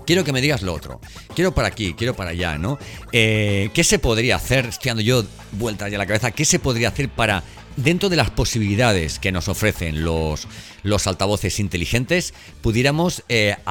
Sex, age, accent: male, 40-59, Spanish